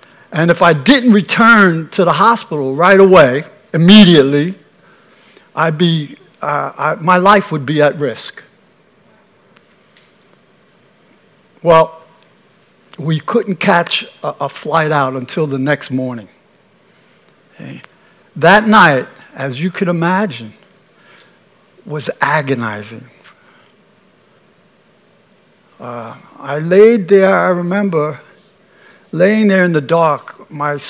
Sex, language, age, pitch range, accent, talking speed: male, English, 70-89, 160-215 Hz, American, 100 wpm